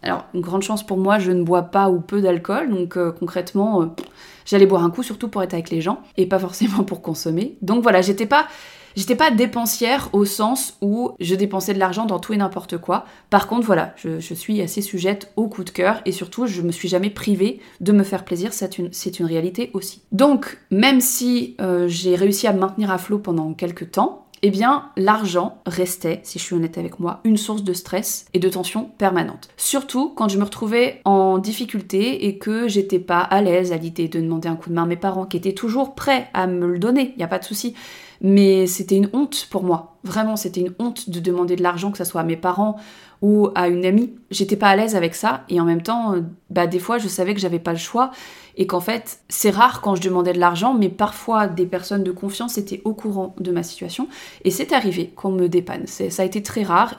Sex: female